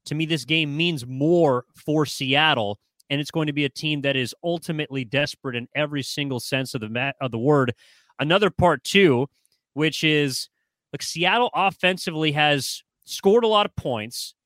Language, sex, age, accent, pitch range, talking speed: English, male, 30-49, American, 130-155 Hz, 160 wpm